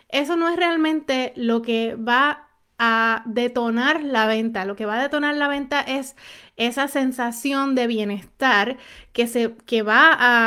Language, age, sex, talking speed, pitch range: Spanish, 30-49, female, 155 wpm, 230-285 Hz